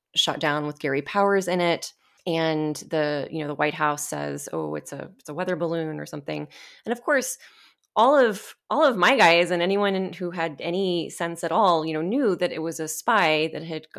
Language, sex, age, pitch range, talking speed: English, female, 20-39, 155-190 Hz, 220 wpm